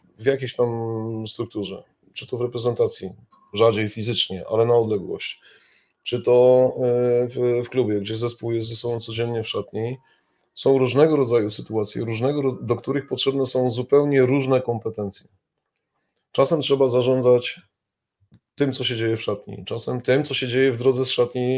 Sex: male